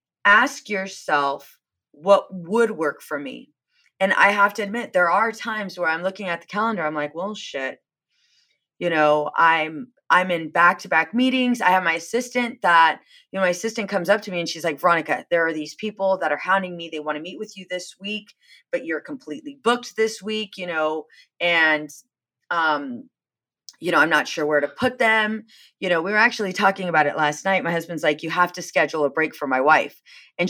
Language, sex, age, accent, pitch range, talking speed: English, female, 30-49, American, 160-220 Hz, 210 wpm